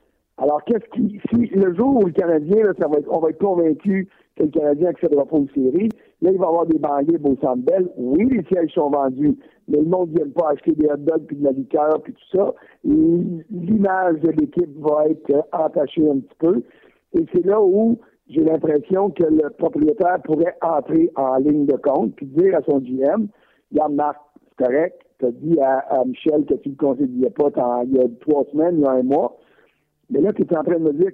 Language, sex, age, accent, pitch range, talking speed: French, male, 60-79, French, 150-190 Hz, 235 wpm